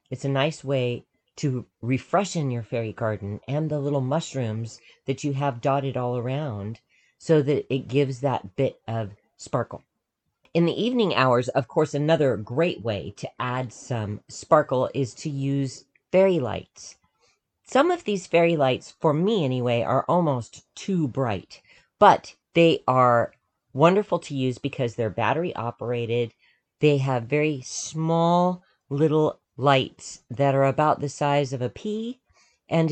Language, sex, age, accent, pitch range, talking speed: English, female, 40-59, American, 120-155 Hz, 150 wpm